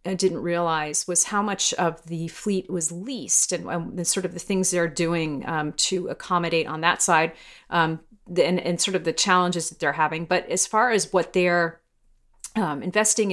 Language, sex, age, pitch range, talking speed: English, female, 40-59, 165-195 Hz, 200 wpm